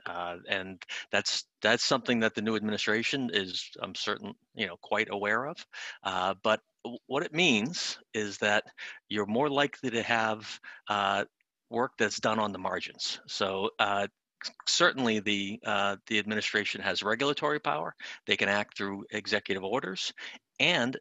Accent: American